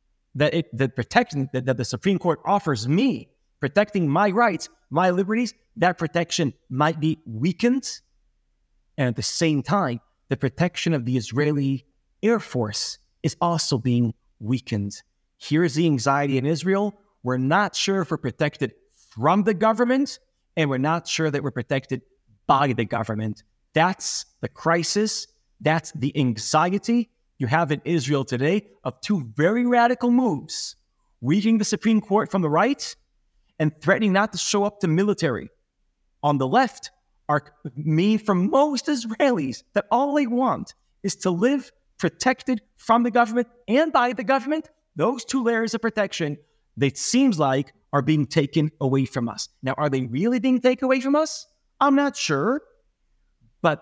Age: 30-49